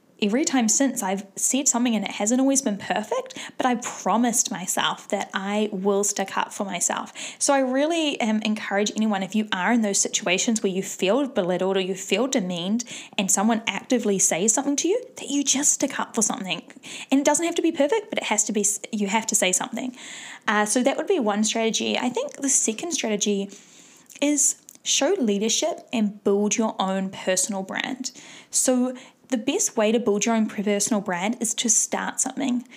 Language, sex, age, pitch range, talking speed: English, female, 10-29, 205-275 Hz, 200 wpm